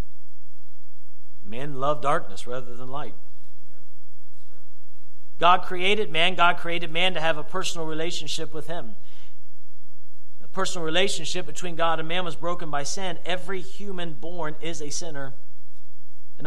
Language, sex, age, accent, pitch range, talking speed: English, male, 40-59, American, 130-170 Hz, 135 wpm